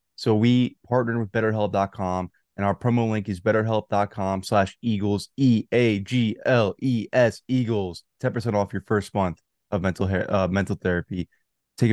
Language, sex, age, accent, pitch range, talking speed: English, male, 20-39, American, 105-125 Hz, 135 wpm